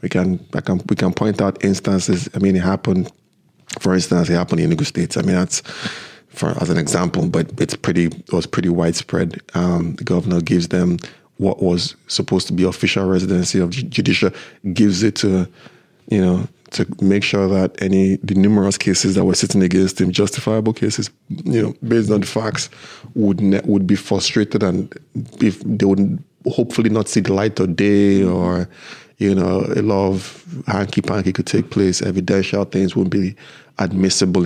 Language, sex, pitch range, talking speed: English, male, 90-105 Hz, 185 wpm